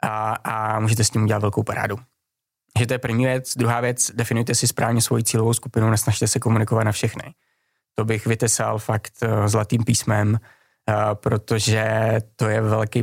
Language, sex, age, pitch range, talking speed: Czech, male, 20-39, 110-120 Hz, 175 wpm